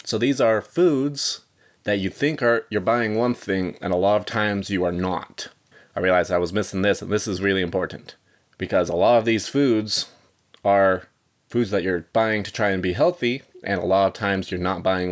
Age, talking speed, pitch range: 30-49, 220 wpm, 95-115 Hz